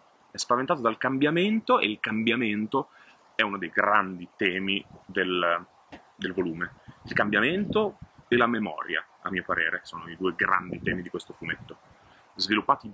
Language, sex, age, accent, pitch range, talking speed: Italian, male, 30-49, native, 95-120 Hz, 150 wpm